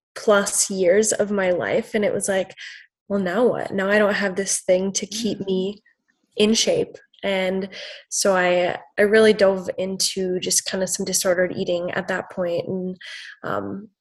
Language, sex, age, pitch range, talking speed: English, female, 20-39, 190-215 Hz, 175 wpm